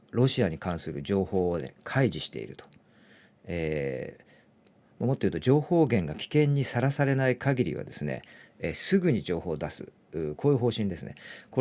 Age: 40-59